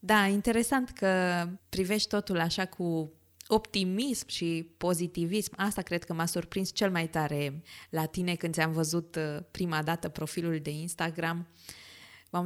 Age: 20-39